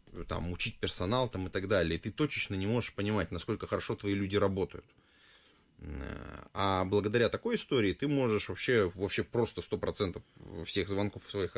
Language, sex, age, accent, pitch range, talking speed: Russian, male, 20-39, native, 90-115 Hz, 160 wpm